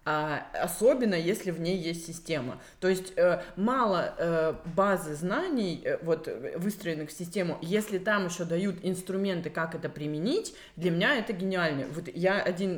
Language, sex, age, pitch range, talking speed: Russian, female, 20-39, 165-210 Hz, 135 wpm